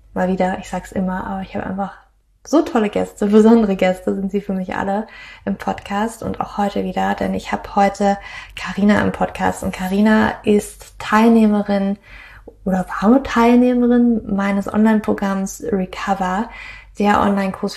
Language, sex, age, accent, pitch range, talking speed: German, female, 20-39, German, 190-225 Hz, 150 wpm